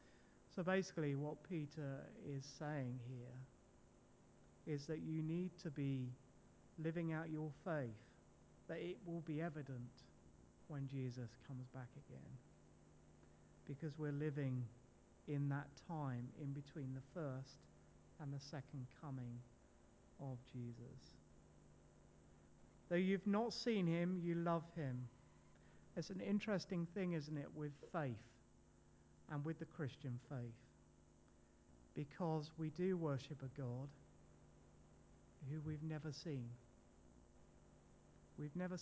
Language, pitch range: English, 120-155 Hz